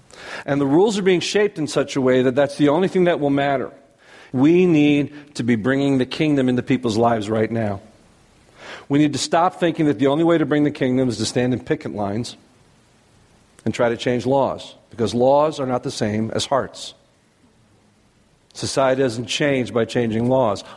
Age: 50-69